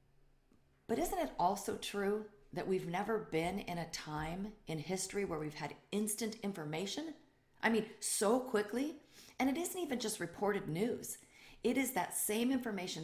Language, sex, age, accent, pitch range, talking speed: English, female, 40-59, American, 160-215 Hz, 160 wpm